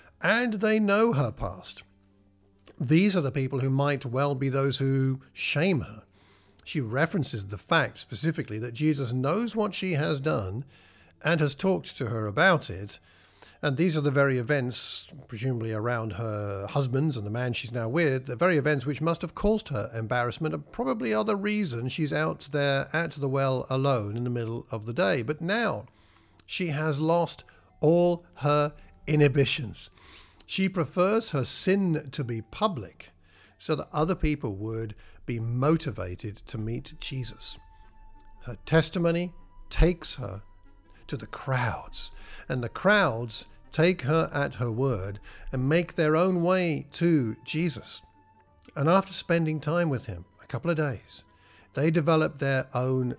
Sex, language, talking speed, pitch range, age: male, English, 160 wpm, 110-155 Hz, 50-69